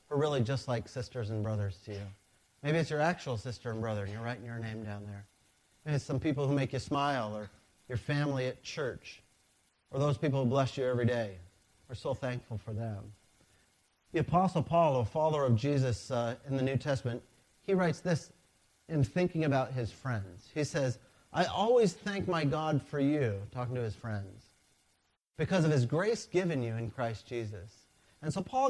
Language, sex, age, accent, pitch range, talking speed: English, male, 40-59, American, 115-170 Hz, 200 wpm